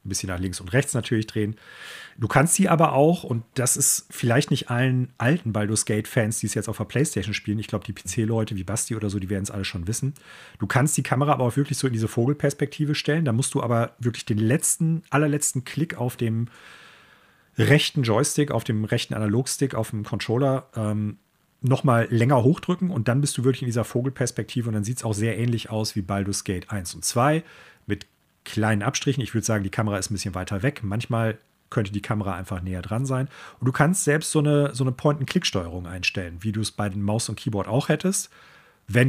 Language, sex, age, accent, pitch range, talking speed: German, male, 40-59, German, 105-135 Hz, 225 wpm